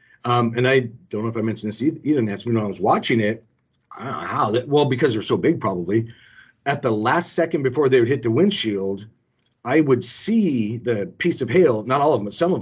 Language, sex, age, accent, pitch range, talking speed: English, male, 40-59, American, 110-130 Hz, 240 wpm